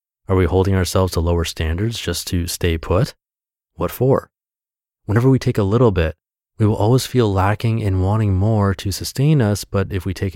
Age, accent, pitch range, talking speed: 30-49, American, 90-115 Hz, 195 wpm